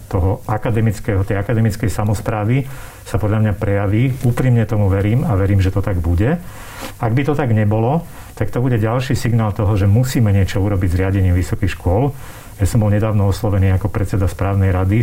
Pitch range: 100-120 Hz